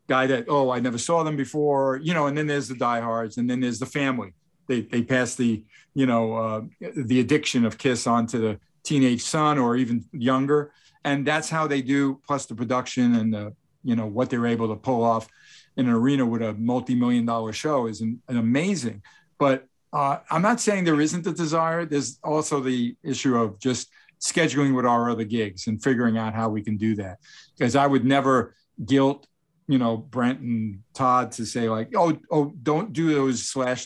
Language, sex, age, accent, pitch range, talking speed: English, male, 50-69, American, 120-145 Hz, 205 wpm